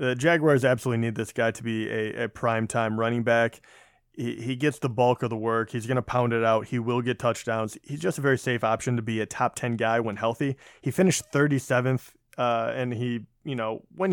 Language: English